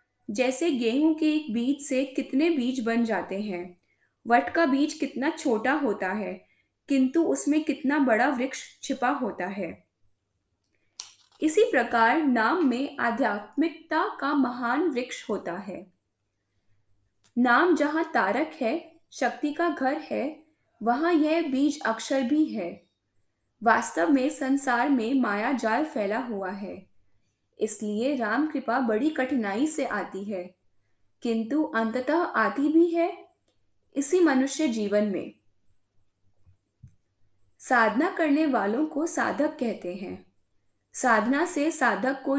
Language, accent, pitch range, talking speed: Hindi, native, 205-295 Hz, 120 wpm